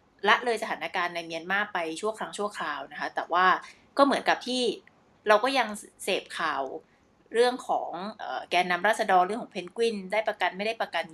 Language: Thai